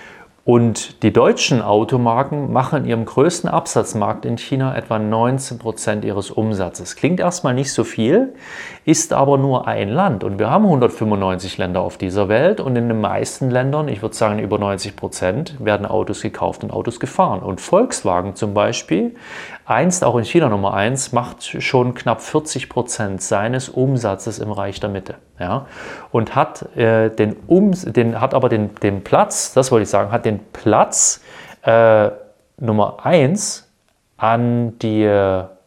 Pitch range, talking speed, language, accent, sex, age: 105-135 Hz, 150 wpm, German, German, male, 30-49